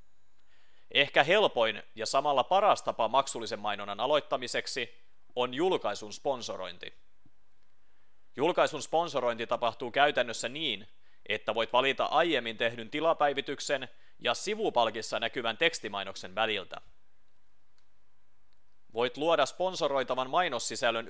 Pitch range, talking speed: 100-125 Hz, 90 wpm